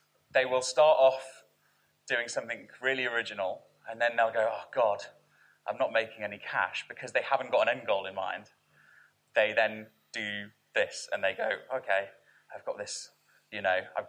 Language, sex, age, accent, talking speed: English, male, 20-39, British, 180 wpm